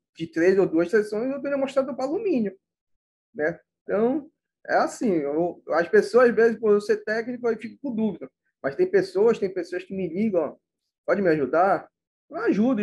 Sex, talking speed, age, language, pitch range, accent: male, 190 wpm, 20-39, Portuguese, 170-225 Hz, Brazilian